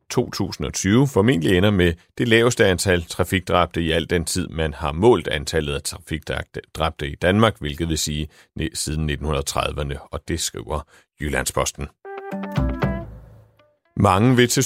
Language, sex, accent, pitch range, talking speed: Danish, male, native, 80-115 Hz, 140 wpm